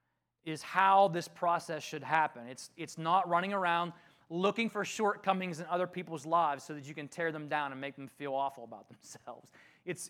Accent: American